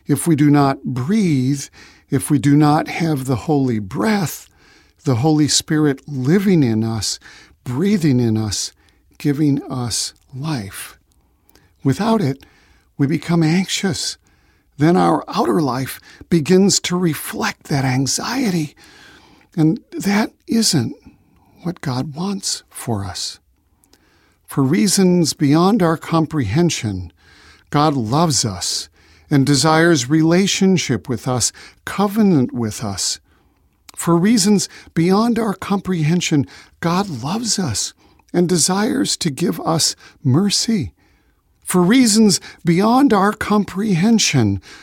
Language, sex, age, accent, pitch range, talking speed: English, male, 50-69, American, 125-185 Hz, 110 wpm